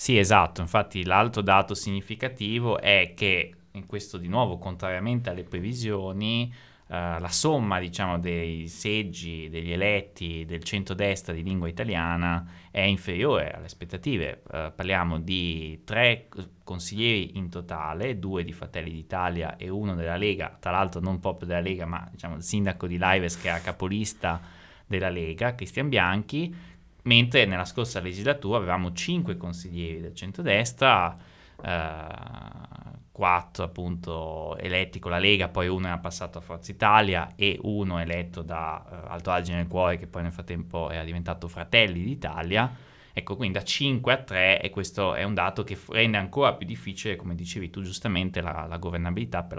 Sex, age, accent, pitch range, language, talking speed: male, 20-39, native, 85-100 Hz, Italian, 160 wpm